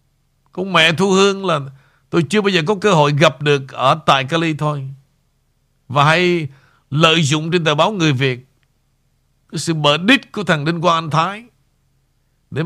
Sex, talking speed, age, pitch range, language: male, 180 wpm, 60-79, 135-190 Hz, Vietnamese